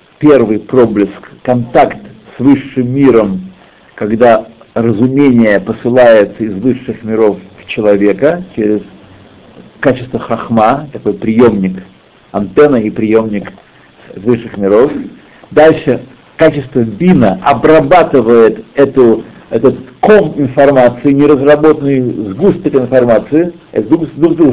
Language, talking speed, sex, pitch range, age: Russian, 90 wpm, male, 110-155 Hz, 60-79